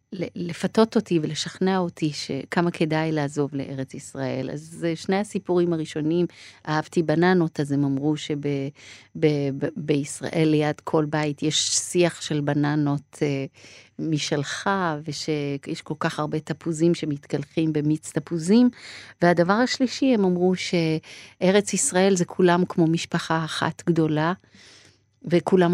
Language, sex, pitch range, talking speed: Hebrew, female, 150-180 Hz, 115 wpm